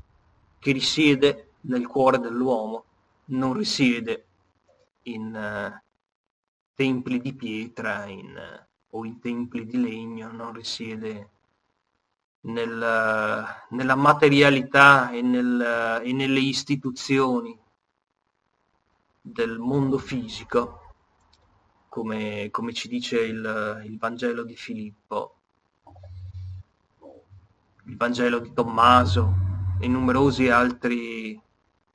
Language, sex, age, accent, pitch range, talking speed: Italian, male, 30-49, native, 110-135 Hz, 90 wpm